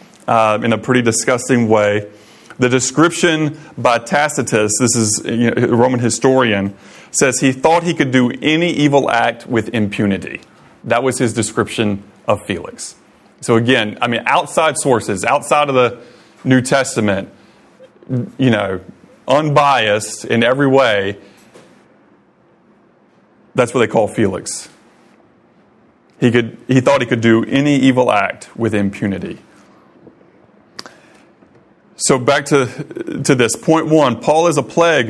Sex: male